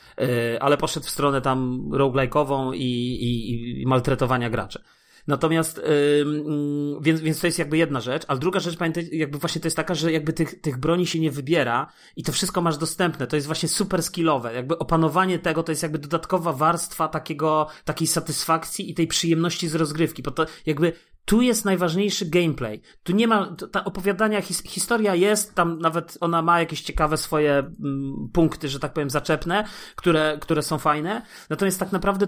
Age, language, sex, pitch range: 30-49, Polish, male, 145-175 Hz